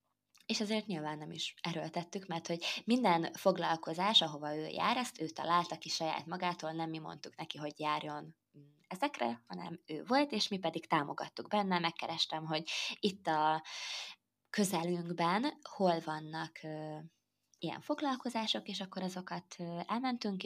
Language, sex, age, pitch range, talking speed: Hungarian, female, 20-39, 155-185 Hz, 140 wpm